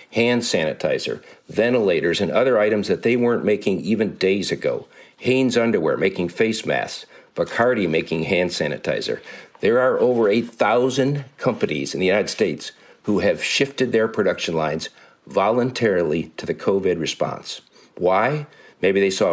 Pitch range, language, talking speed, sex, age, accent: 110-135 Hz, English, 145 wpm, male, 50-69, American